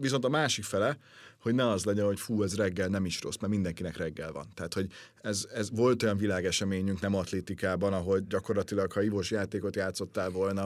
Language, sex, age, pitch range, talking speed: Hungarian, male, 30-49, 90-110 Hz, 195 wpm